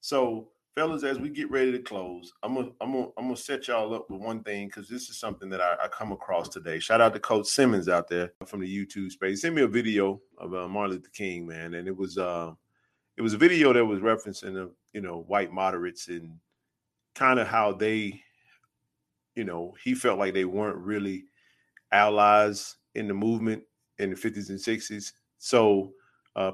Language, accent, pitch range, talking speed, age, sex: English, American, 95-115 Hz, 205 wpm, 30-49, male